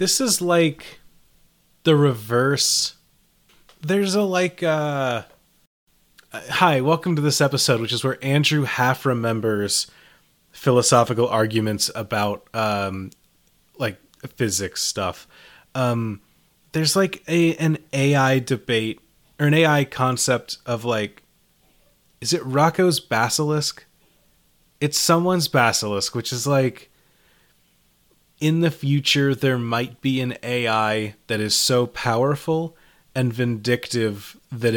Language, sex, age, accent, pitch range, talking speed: English, male, 30-49, American, 110-145 Hz, 110 wpm